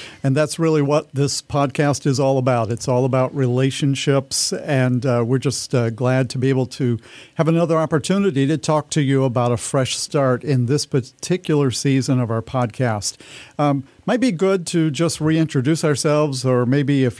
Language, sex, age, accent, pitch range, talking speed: English, male, 50-69, American, 130-155 Hz, 180 wpm